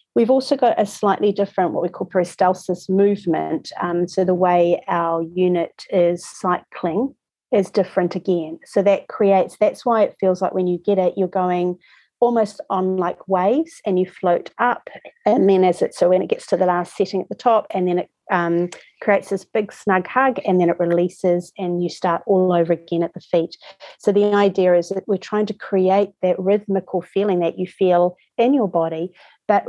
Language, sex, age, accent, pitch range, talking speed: English, female, 40-59, Australian, 175-200 Hz, 200 wpm